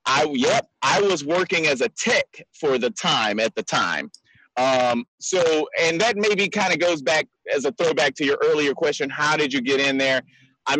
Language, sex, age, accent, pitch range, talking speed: English, male, 30-49, American, 135-195 Hz, 205 wpm